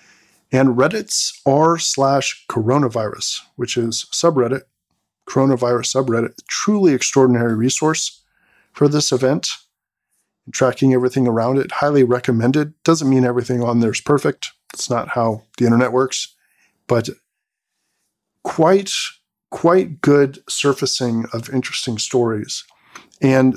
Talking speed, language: 110 wpm, English